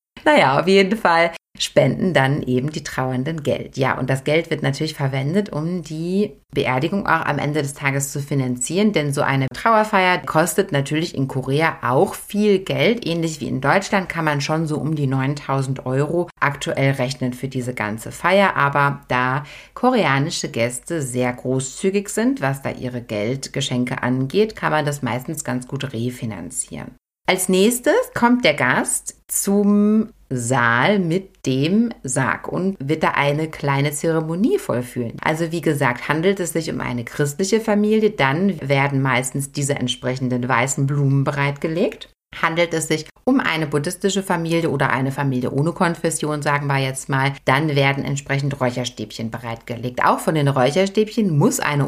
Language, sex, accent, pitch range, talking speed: German, female, German, 130-175 Hz, 160 wpm